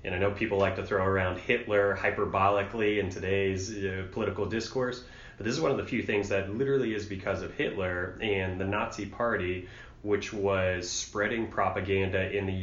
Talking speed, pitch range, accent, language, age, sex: 185 wpm, 90-105 Hz, American, English, 30-49, male